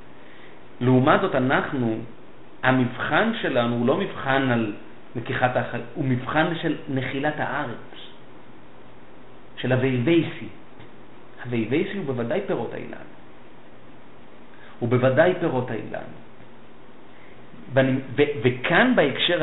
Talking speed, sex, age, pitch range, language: 95 wpm, male, 50-69, 115-140 Hz, Hebrew